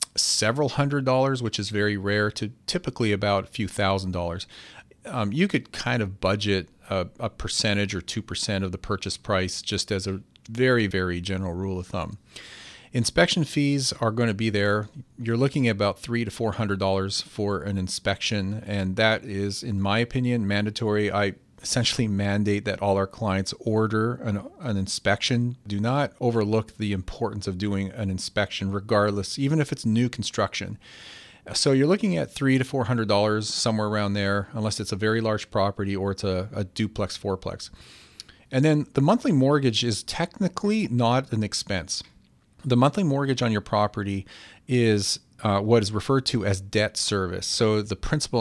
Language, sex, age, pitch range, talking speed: English, male, 40-59, 100-120 Hz, 180 wpm